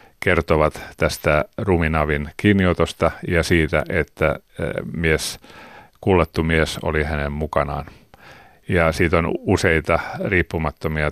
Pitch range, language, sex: 75-90 Hz, Finnish, male